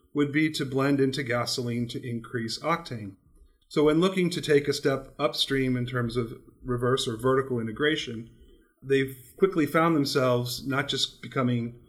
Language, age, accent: English, 40-59, American